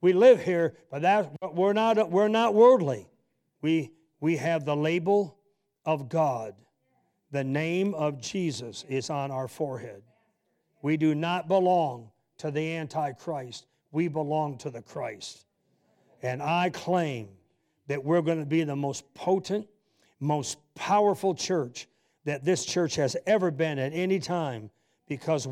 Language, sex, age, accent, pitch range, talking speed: English, male, 60-79, American, 145-185 Hz, 145 wpm